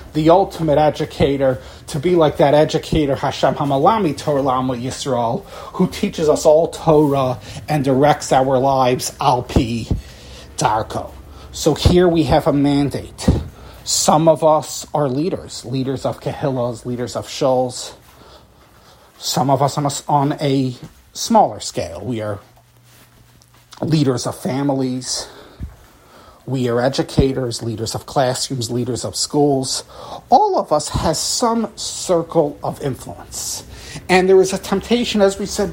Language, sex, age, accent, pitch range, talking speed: English, male, 30-49, American, 125-170 Hz, 130 wpm